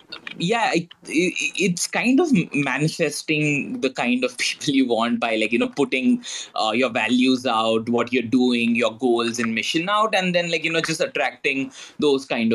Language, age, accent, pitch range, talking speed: English, 20-39, Indian, 125-175 Hz, 175 wpm